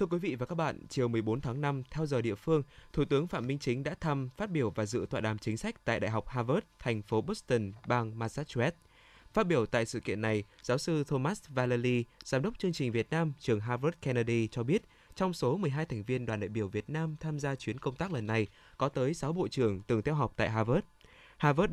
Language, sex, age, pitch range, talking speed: Vietnamese, male, 20-39, 115-155 Hz, 240 wpm